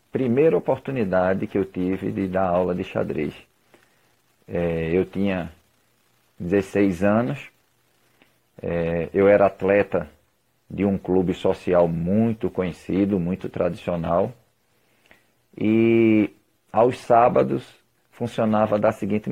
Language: Portuguese